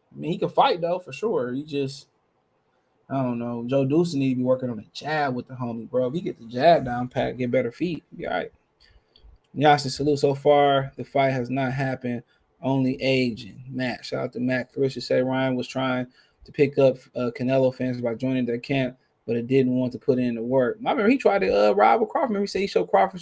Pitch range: 125-160 Hz